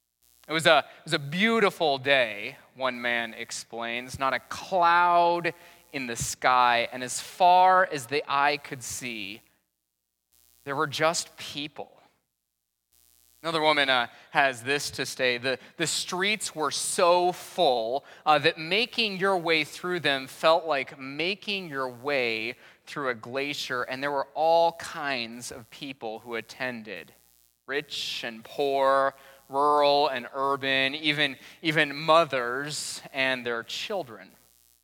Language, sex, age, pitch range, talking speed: English, male, 20-39, 120-155 Hz, 135 wpm